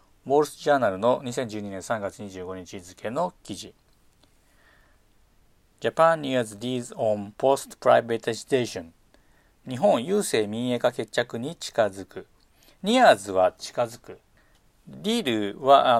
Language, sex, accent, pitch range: Japanese, male, native, 100-150 Hz